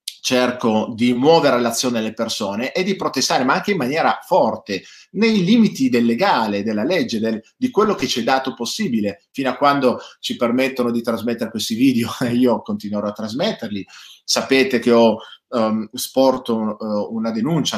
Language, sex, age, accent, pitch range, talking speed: Italian, male, 30-49, native, 110-155 Hz, 170 wpm